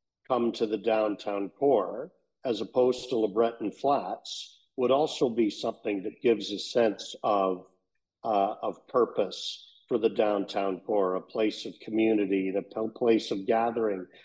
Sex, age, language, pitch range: male, 50-69, English, 105-120 Hz